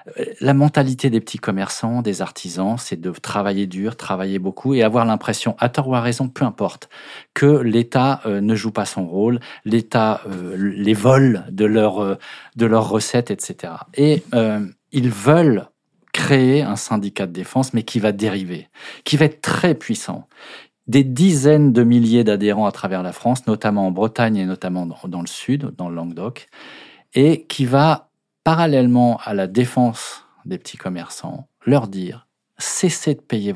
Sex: male